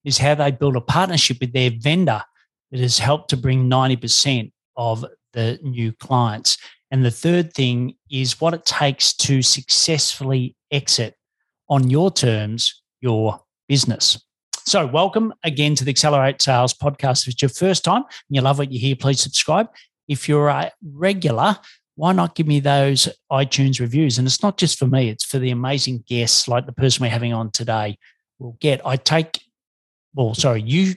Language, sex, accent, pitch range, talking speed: English, male, Australian, 125-145 Hz, 180 wpm